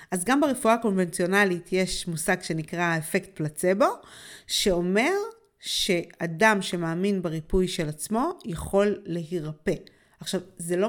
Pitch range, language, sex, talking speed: 165-195 Hz, Hebrew, female, 110 wpm